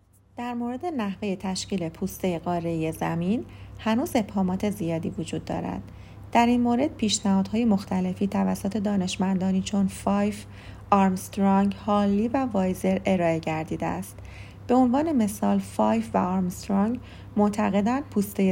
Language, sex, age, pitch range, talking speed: Persian, female, 30-49, 165-210 Hz, 115 wpm